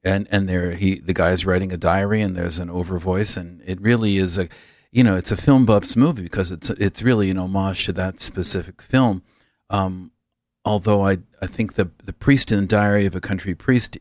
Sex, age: male, 50-69